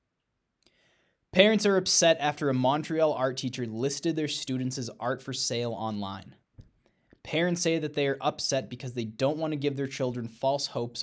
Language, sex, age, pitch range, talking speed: English, male, 20-39, 120-160 Hz, 175 wpm